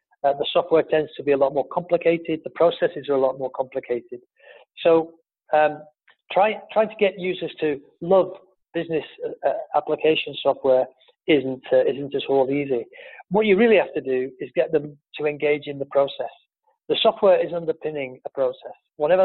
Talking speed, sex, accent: 185 wpm, male, British